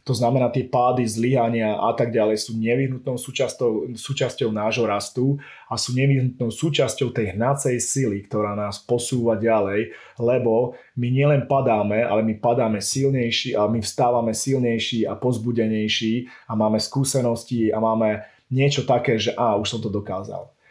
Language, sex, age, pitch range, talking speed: Slovak, male, 30-49, 110-130 Hz, 150 wpm